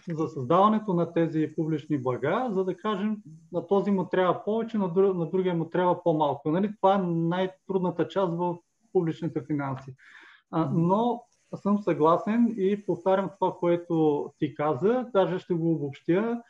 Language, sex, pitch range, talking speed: Bulgarian, male, 160-195 Hz, 155 wpm